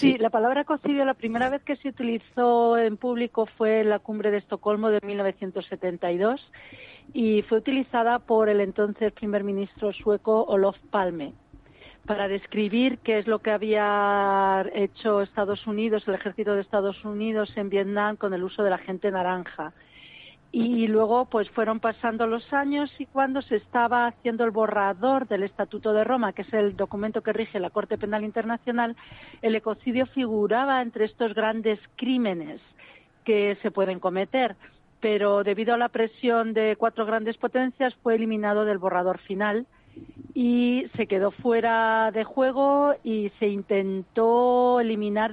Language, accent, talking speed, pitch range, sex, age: Spanish, Spanish, 155 wpm, 205-235 Hz, female, 40-59